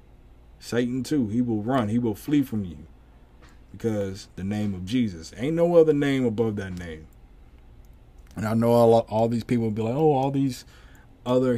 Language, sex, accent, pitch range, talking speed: English, male, American, 100-130 Hz, 180 wpm